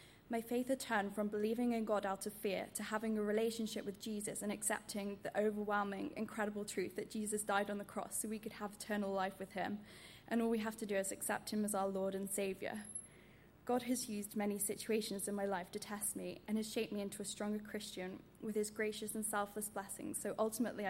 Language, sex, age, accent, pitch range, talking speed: English, female, 10-29, British, 200-220 Hz, 225 wpm